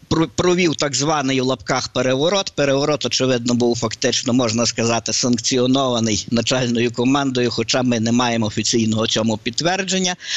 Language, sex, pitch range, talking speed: Ukrainian, male, 115-150 Hz, 125 wpm